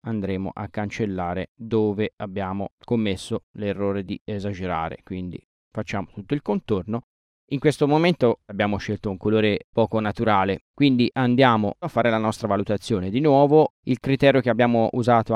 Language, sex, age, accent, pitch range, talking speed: Italian, male, 20-39, native, 100-125 Hz, 145 wpm